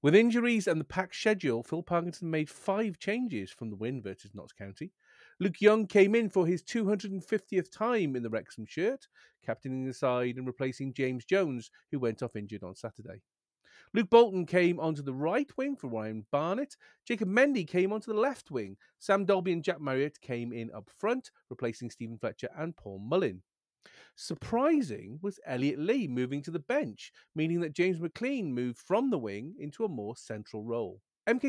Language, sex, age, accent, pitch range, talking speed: English, male, 40-59, British, 125-210 Hz, 185 wpm